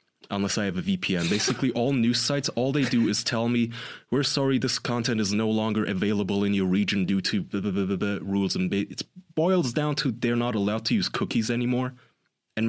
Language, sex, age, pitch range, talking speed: English, male, 20-39, 95-115 Hz, 225 wpm